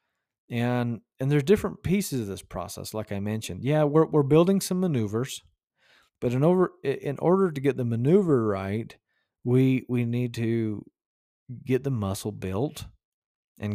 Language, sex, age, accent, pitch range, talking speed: English, male, 40-59, American, 110-145 Hz, 155 wpm